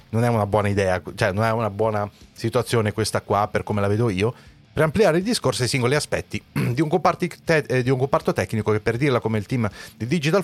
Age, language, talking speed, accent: 30-49, Italian, 235 wpm, native